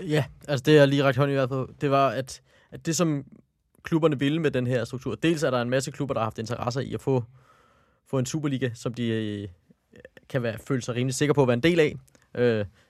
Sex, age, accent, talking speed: male, 20-39, native, 250 wpm